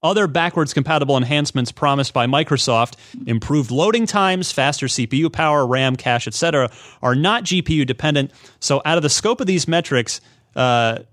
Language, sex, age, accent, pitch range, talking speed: English, male, 30-49, American, 120-165 Hz, 155 wpm